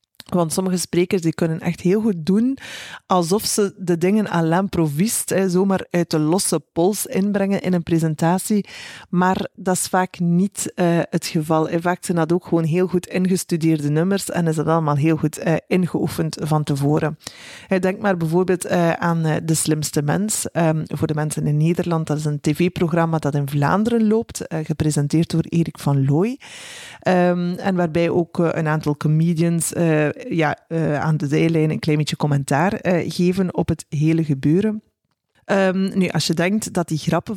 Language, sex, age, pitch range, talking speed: Dutch, female, 20-39, 155-180 Hz, 175 wpm